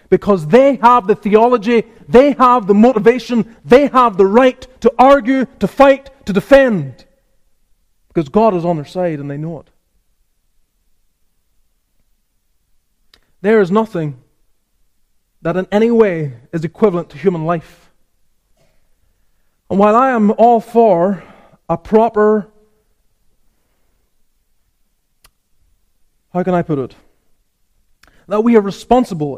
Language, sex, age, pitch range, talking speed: English, male, 30-49, 150-225 Hz, 120 wpm